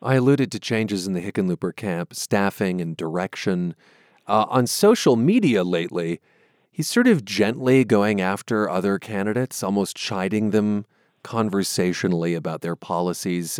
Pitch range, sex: 95-125 Hz, male